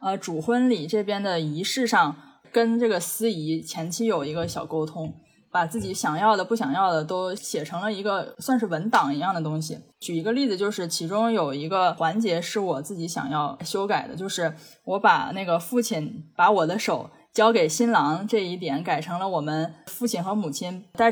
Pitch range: 165-225 Hz